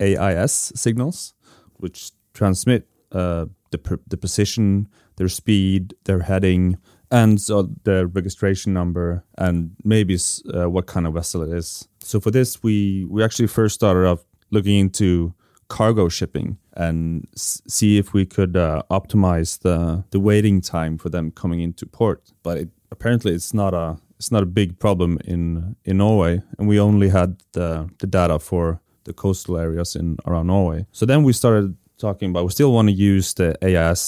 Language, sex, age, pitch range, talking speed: English, male, 30-49, 85-105 Hz, 175 wpm